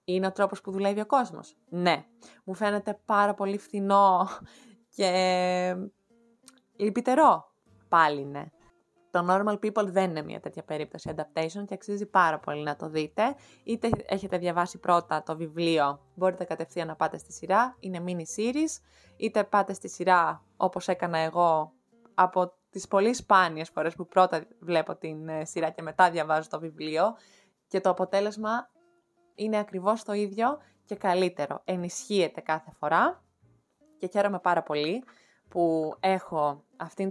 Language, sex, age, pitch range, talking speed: Greek, female, 20-39, 160-200 Hz, 140 wpm